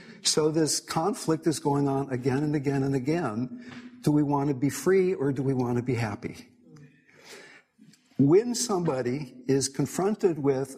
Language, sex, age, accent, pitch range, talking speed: English, male, 60-79, American, 125-160 Hz, 160 wpm